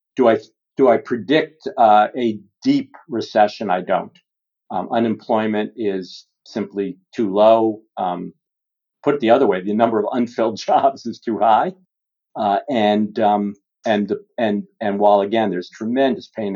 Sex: male